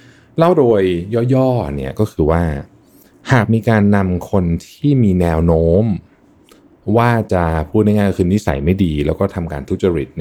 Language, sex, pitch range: Thai, male, 80-110 Hz